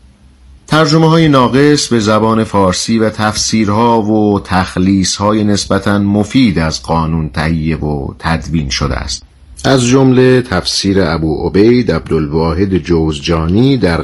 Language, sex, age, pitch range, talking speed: Persian, male, 50-69, 80-110 Hz, 120 wpm